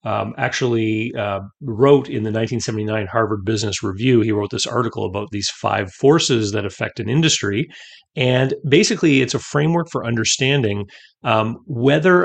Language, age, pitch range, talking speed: English, 30-49, 105-135 Hz, 150 wpm